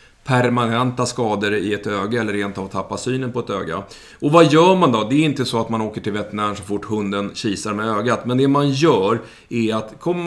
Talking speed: 230 wpm